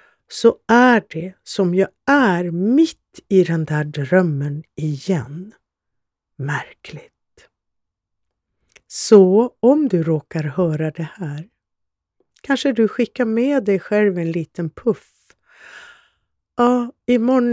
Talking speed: 105 wpm